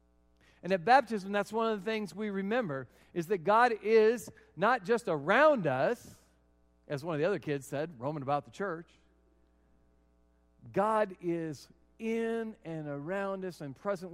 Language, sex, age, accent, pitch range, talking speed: English, male, 50-69, American, 140-195 Hz, 155 wpm